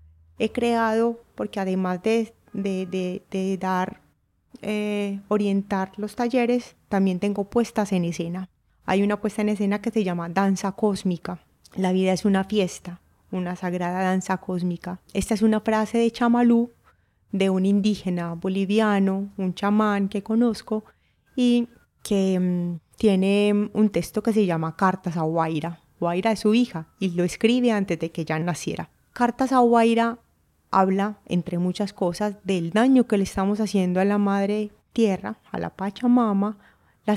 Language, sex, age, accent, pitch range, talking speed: Spanish, female, 20-39, Colombian, 180-215 Hz, 155 wpm